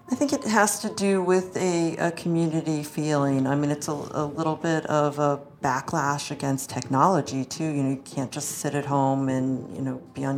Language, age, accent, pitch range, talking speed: English, 40-59, American, 135-150 Hz, 215 wpm